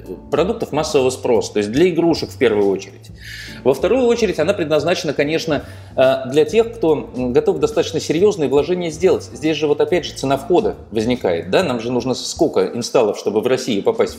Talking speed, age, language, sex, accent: 180 wpm, 30-49, Russian, male, native